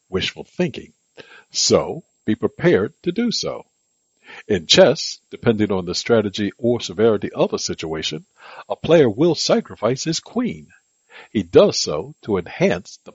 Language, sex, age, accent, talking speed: English, male, 60-79, American, 140 wpm